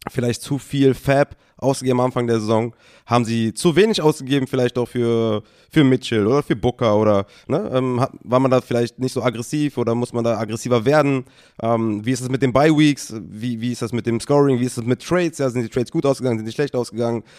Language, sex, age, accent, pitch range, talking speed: German, male, 30-49, German, 110-140 Hz, 235 wpm